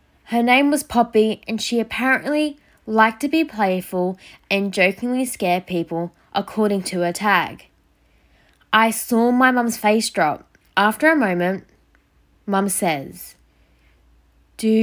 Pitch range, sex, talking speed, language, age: 195-255 Hz, female, 125 wpm, English, 10-29